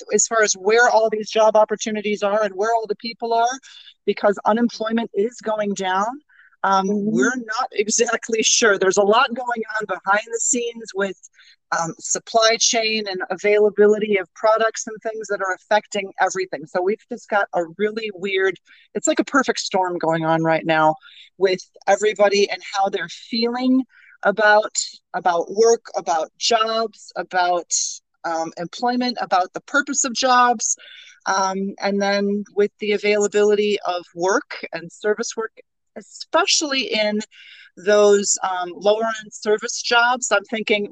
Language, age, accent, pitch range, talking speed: English, 40-59, American, 190-230 Hz, 150 wpm